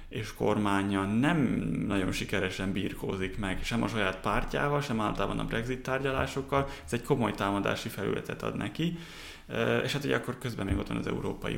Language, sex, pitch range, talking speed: Hungarian, male, 100-130 Hz, 170 wpm